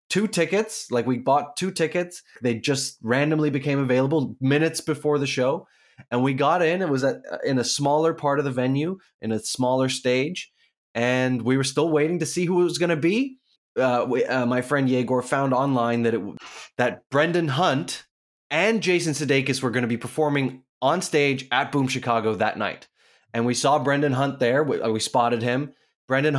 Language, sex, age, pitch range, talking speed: English, male, 20-39, 125-150 Hz, 185 wpm